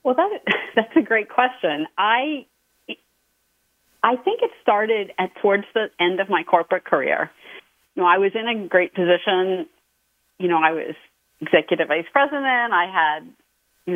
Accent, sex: American, female